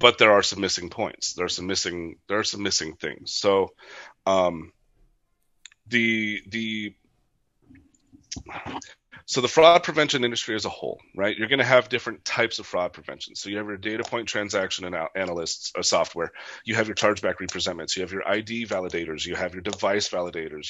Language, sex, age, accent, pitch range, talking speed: English, male, 30-49, American, 95-125 Hz, 185 wpm